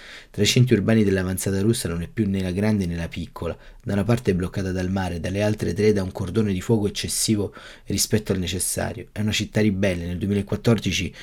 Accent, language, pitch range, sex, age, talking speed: native, Italian, 90-105 Hz, male, 30-49, 205 wpm